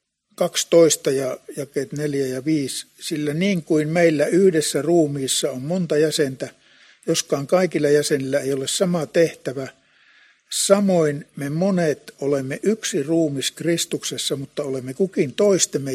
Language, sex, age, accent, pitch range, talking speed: Finnish, male, 60-79, native, 145-175 Hz, 125 wpm